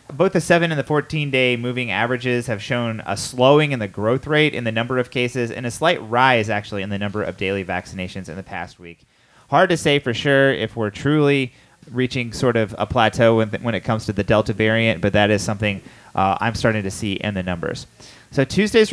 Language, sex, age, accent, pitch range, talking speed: English, male, 30-49, American, 105-135 Hz, 225 wpm